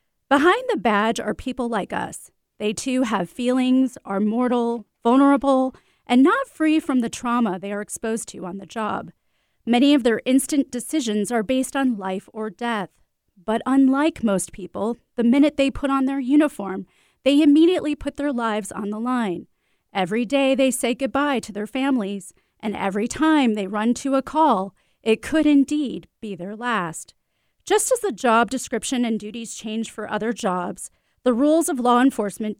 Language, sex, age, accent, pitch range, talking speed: English, female, 30-49, American, 215-275 Hz, 175 wpm